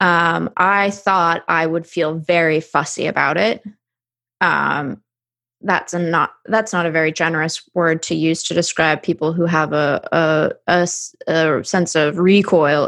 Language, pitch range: English, 160-185 Hz